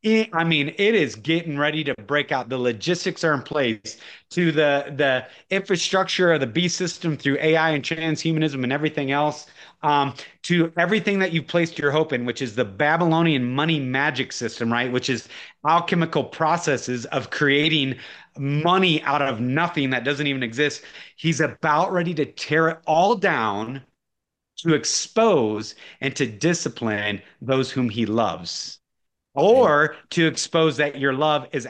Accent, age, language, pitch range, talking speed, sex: American, 30-49, English, 130-165 Hz, 160 wpm, male